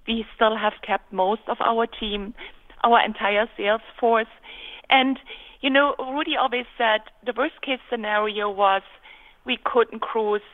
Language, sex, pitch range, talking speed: English, female, 215-265 Hz, 150 wpm